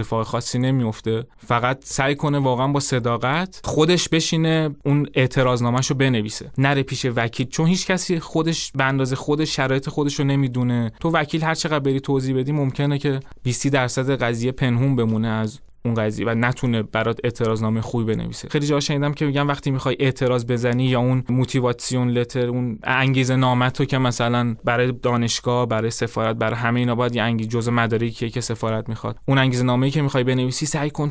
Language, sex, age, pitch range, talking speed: Persian, male, 20-39, 120-140 Hz, 180 wpm